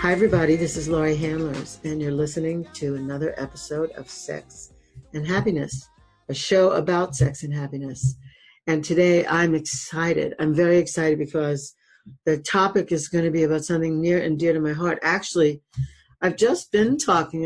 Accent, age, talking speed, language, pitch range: American, 50-69, 170 wpm, English, 150-175 Hz